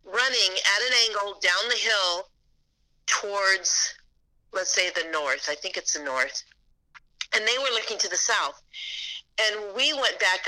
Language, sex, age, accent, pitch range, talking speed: English, female, 40-59, American, 180-245 Hz, 160 wpm